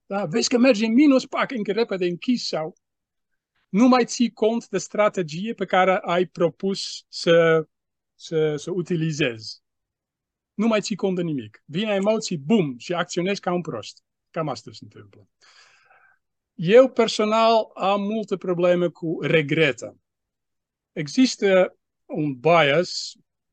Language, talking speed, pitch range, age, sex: Romanian, 130 wpm, 155-215 Hz, 40-59, male